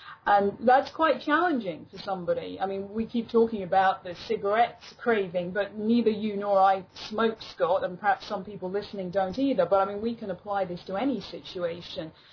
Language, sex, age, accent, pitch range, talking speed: English, female, 30-49, British, 190-245 Hz, 190 wpm